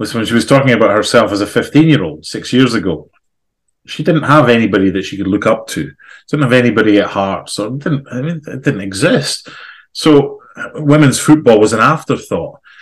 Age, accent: 30-49, British